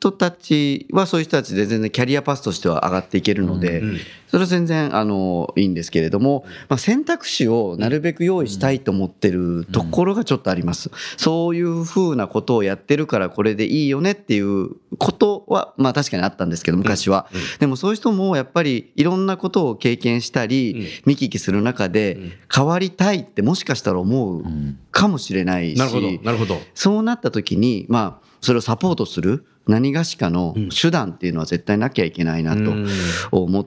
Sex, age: male, 40-59